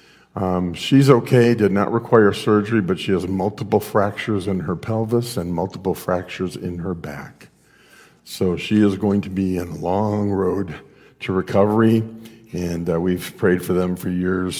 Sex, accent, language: male, American, English